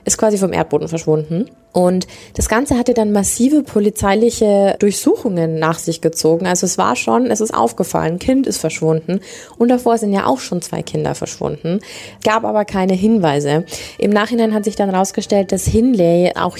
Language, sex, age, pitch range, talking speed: German, female, 20-39, 165-210 Hz, 175 wpm